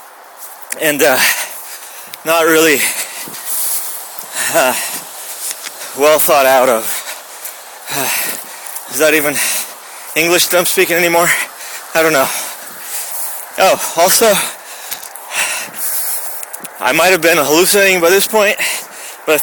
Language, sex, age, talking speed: English, male, 30-49, 100 wpm